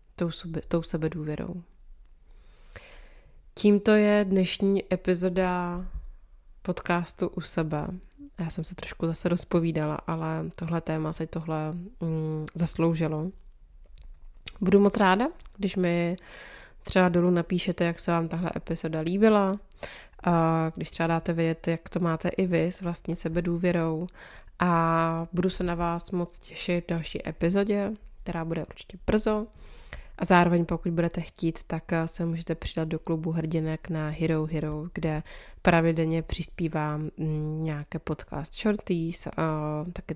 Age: 20-39